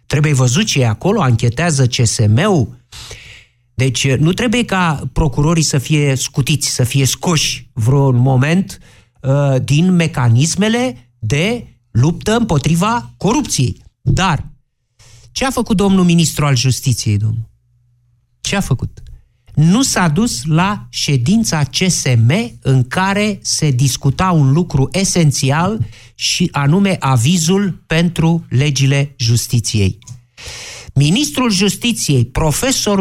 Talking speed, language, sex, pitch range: 110 wpm, Romanian, male, 120-180 Hz